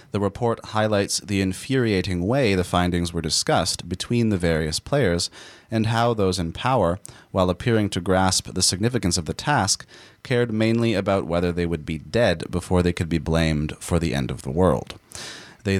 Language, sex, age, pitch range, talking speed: English, male, 30-49, 85-105 Hz, 180 wpm